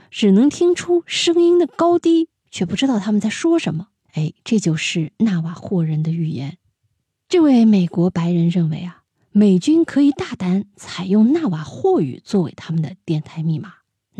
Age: 20-39